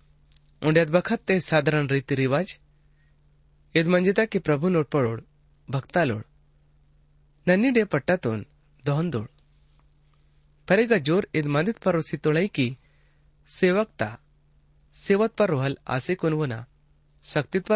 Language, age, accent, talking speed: Hindi, 30-49, native, 95 wpm